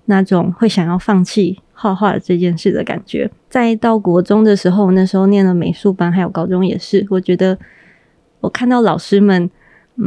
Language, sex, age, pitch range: Chinese, female, 20-39, 185-215 Hz